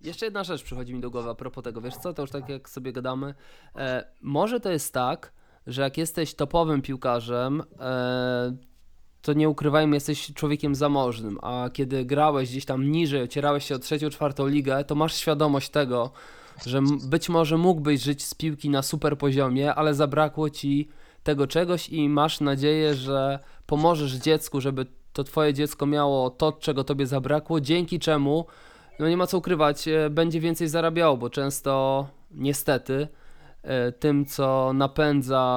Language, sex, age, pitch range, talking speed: Polish, male, 20-39, 130-150 Hz, 160 wpm